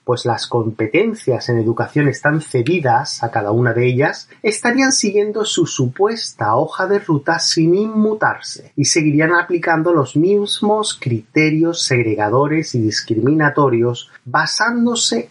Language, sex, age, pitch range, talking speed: Spanish, male, 30-49, 125-175 Hz, 120 wpm